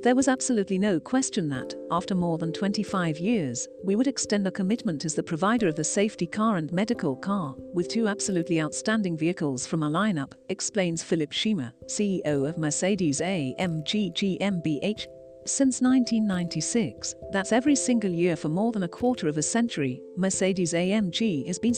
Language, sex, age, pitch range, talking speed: English, female, 50-69, 165-225 Hz, 160 wpm